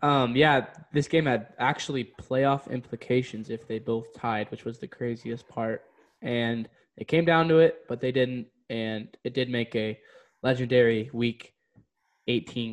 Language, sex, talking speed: English, male, 160 wpm